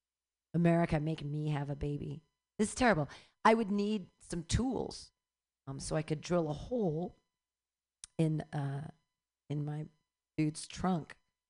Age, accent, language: 40-59, American, English